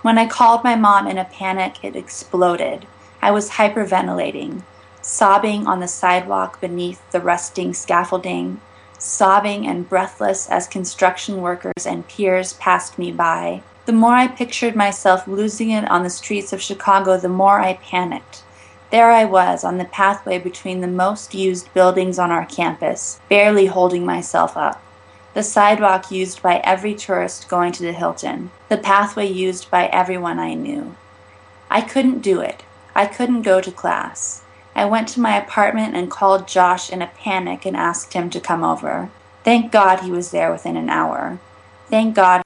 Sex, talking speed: female, 170 wpm